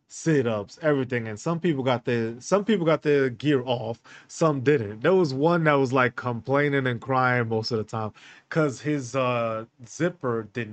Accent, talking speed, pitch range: American, 185 wpm, 115-150 Hz